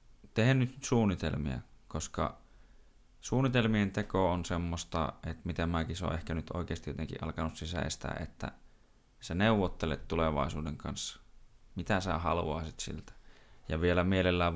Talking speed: 125 wpm